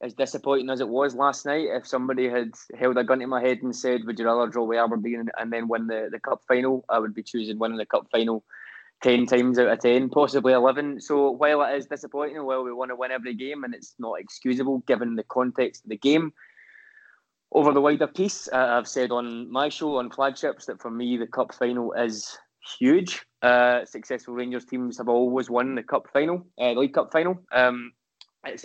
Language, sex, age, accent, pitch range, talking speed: English, male, 20-39, British, 120-140 Hz, 220 wpm